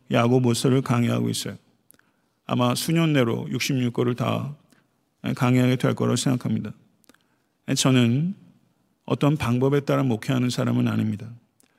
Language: Korean